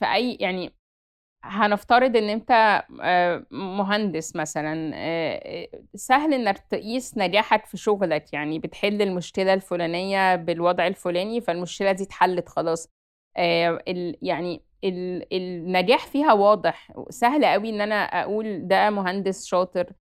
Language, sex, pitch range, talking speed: Arabic, female, 185-220 Hz, 105 wpm